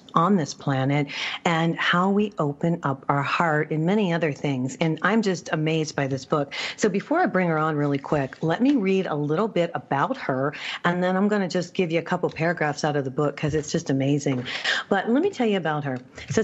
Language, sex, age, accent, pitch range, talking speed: English, female, 40-59, American, 145-190 Hz, 235 wpm